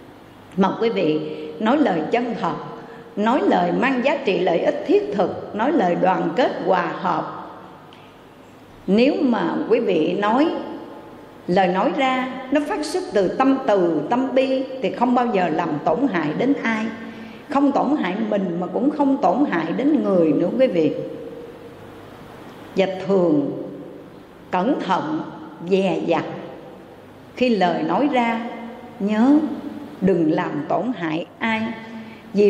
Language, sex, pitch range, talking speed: Vietnamese, female, 195-280 Hz, 145 wpm